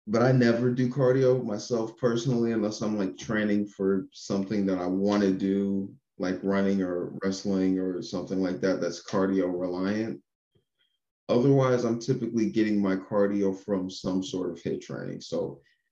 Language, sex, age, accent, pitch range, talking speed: English, male, 30-49, American, 95-105 Hz, 160 wpm